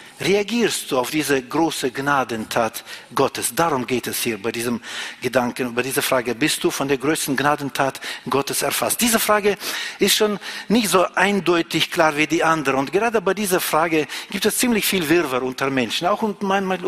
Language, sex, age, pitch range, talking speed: German, male, 50-69, 140-190 Hz, 180 wpm